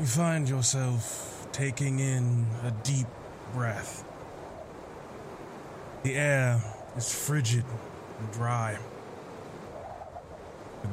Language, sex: English, male